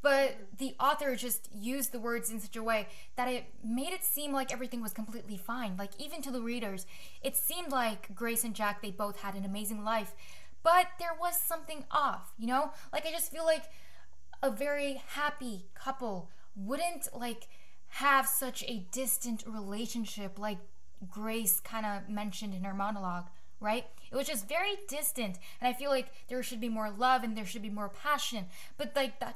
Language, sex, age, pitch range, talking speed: English, female, 10-29, 210-275 Hz, 190 wpm